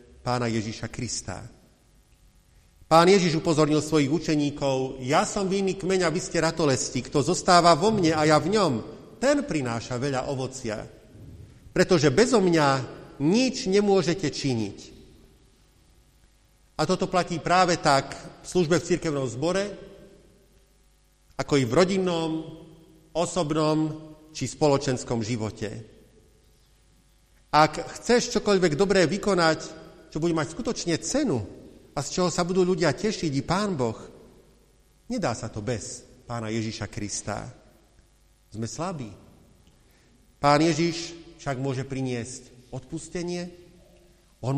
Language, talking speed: Slovak, 115 wpm